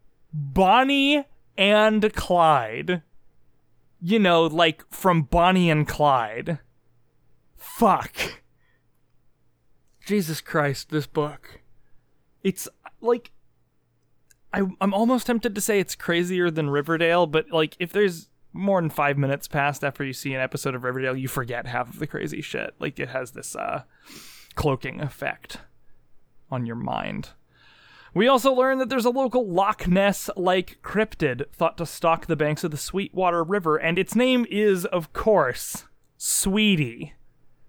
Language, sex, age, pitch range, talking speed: English, male, 20-39, 145-195 Hz, 135 wpm